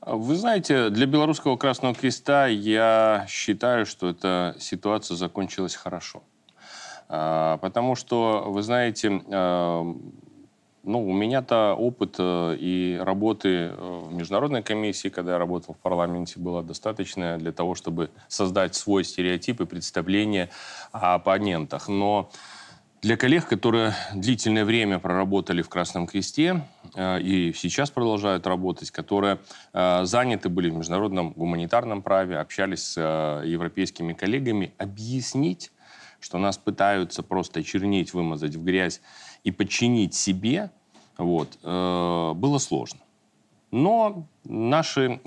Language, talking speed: Russian, 115 wpm